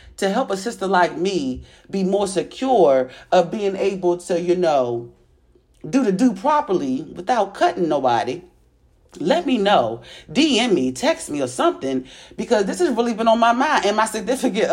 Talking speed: 170 wpm